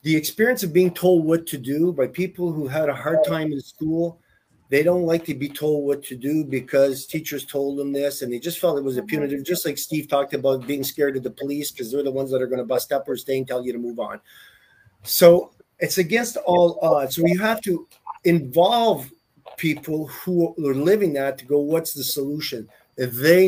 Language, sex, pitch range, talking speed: English, male, 130-165 Hz, 230 wpm